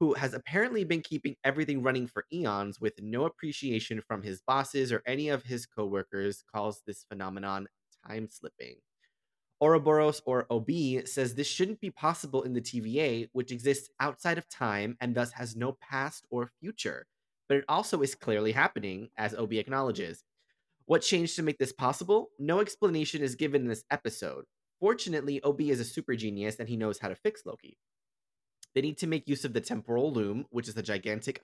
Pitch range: 110-150 Hz